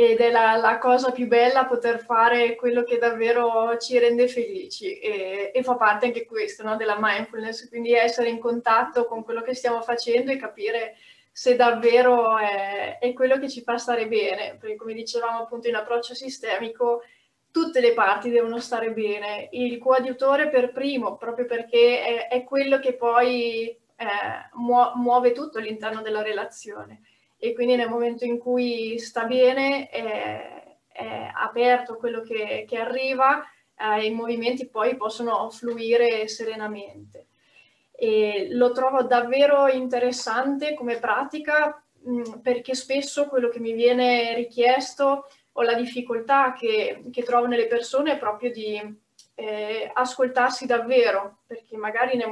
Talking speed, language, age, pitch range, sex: 145 wpm, Italian, 20-39, 230-255 Hz, female